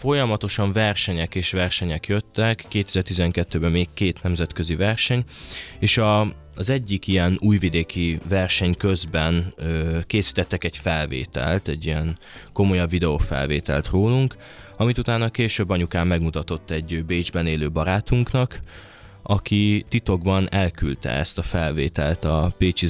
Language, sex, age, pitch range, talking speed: Hungarian, male, 20-39, 80-100 Hz, 115 wpm